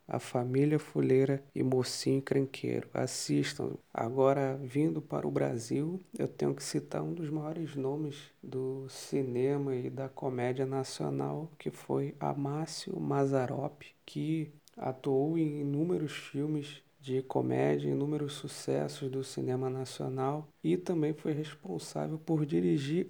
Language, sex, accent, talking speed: Portuguese, male, Brazilian, 125 wpm